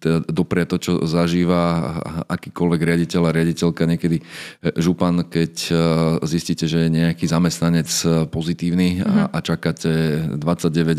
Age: 30-49